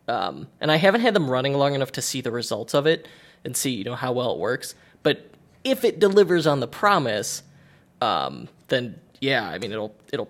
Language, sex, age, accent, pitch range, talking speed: English, male, 20-39, American, 125-165 Hz, 215 wpm